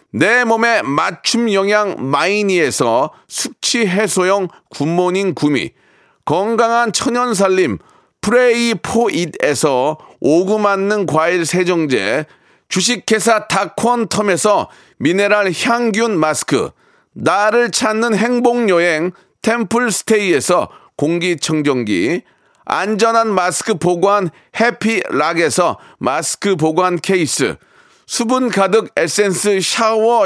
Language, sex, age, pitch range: Korean, male, 40-59, 185-235 Hz